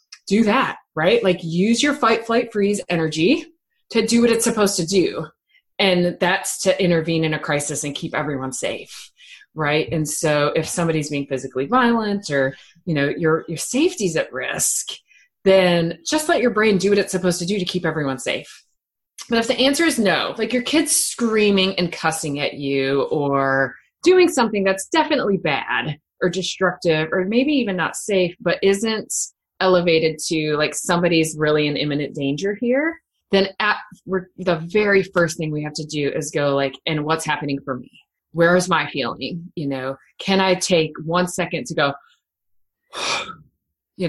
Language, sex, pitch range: English, female, 150-200 Hz